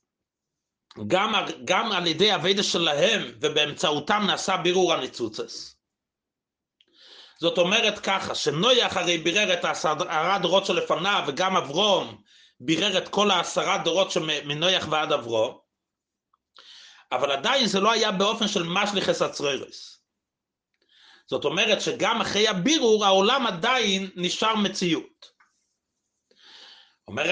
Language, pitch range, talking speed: Hebrew, 160-195 Hz, 110 wpm